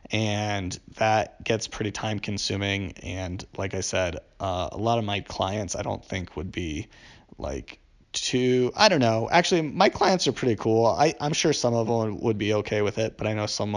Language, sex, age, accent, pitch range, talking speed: English, male, 30-49, American, 100-125 Hz, 205 wpm